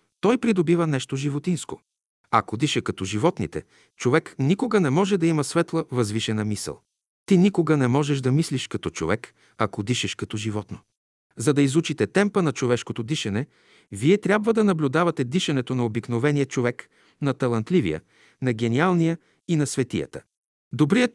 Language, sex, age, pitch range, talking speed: Bulgarian, male, 50-69, 125-165 Hz, 150 wpm